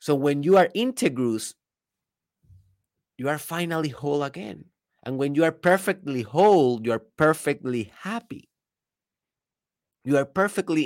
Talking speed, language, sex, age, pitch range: 125 wpm, Spanish, male, 30-49, 125-180 Hz